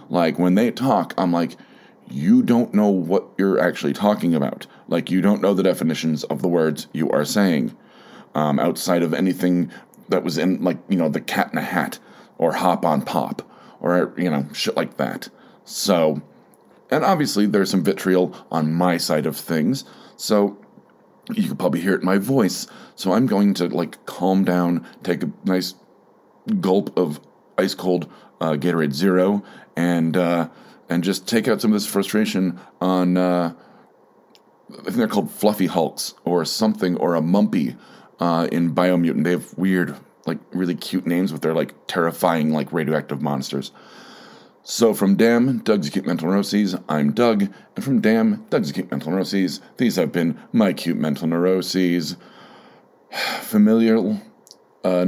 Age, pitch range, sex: 40-59, 85-100 Hz, male